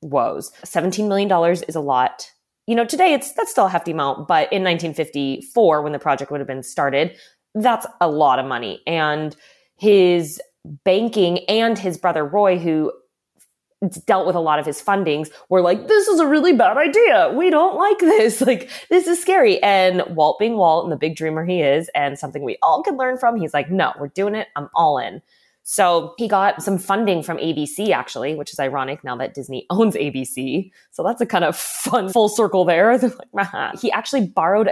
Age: 20-39